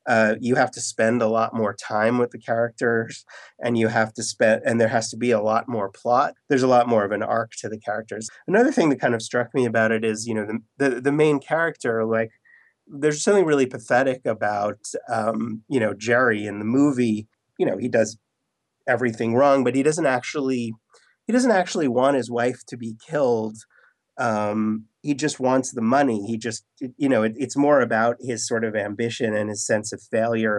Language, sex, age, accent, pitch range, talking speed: English, male, 30-49, American, 110-130 Hz, 210 wpm